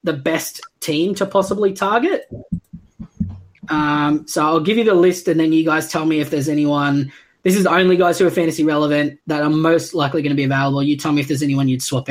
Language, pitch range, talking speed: English, 145-175 Hz, 235 wpm